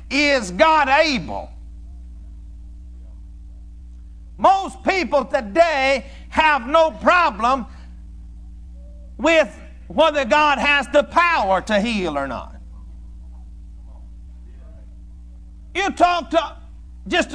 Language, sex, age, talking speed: English, male, 60-79, 80 wpm